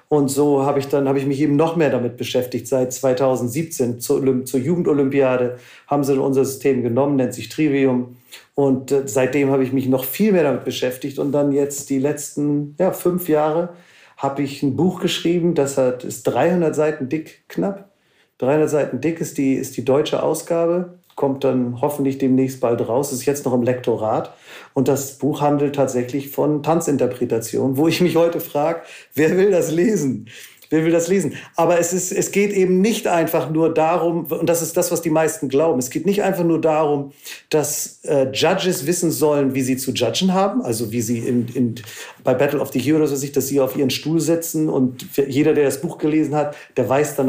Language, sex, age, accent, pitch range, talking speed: German, male, 40-59, German, 130-160 Hz, 200 wpm